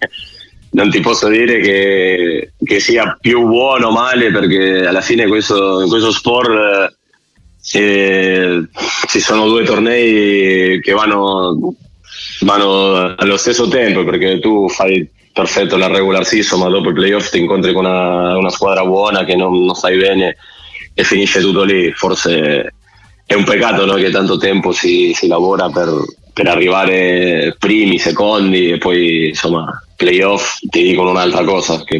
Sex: male